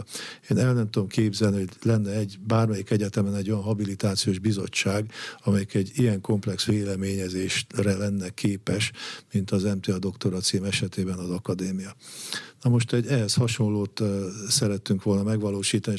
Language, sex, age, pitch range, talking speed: Hungarian, male, 50-69, 100-115 Hz, 140 wpm